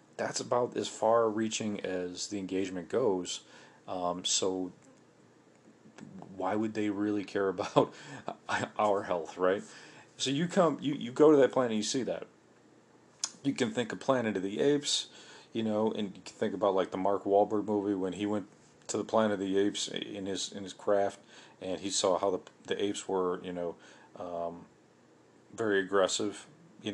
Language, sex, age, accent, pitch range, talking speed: English, male, 40-59, American, 95-110 Hz, 180 wpm